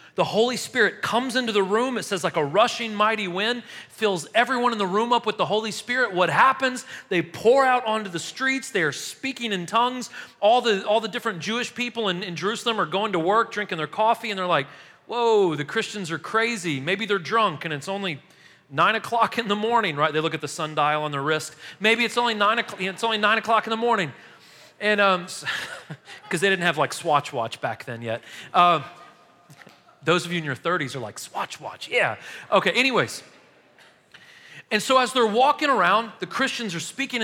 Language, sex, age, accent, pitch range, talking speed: English, male, 40-59, American, 175-240 Hz, 210 wpm